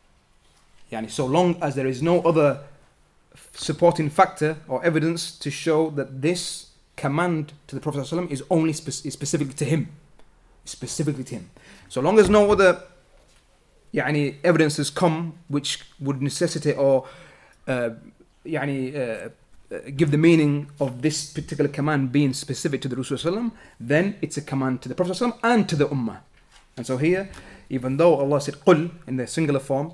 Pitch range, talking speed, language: 130-160 Hz, 170 wpm, English